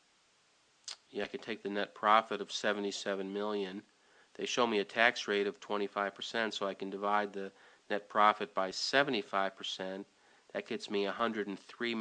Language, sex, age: English, male, 40-59